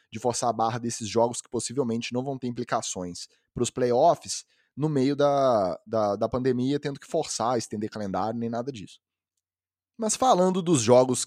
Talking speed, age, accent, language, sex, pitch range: 170 wpm, 20-39, Brazilian, Portuguese, male, 115-150 Hz